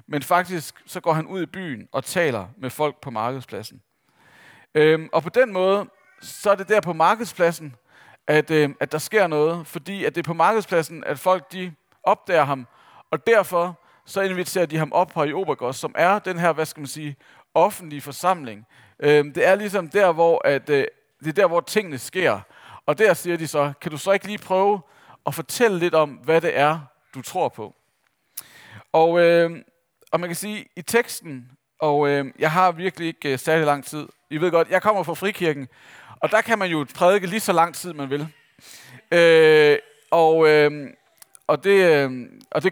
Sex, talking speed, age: male, 200 wpm, 40-59